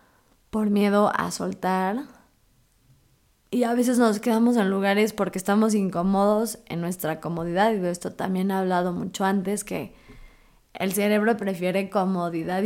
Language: Spanish